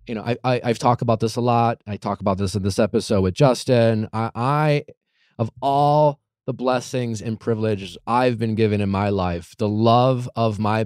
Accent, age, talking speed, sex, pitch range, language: American, 20-39, 205 wpm, male, 110-135 Hz, English